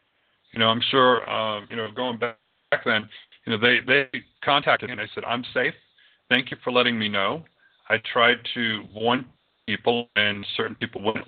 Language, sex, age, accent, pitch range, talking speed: English, male, 50-69, American, 110-140 Hz, 190 wpm